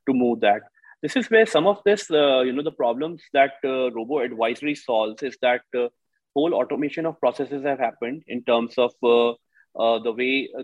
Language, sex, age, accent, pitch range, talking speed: English, male, 30-49, Indian, 120-140 Hz, 205 wpm